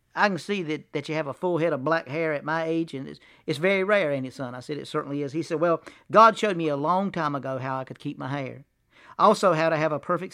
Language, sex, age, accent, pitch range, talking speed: English, male, 50-69, American, 135-175 Hz, 295 wpm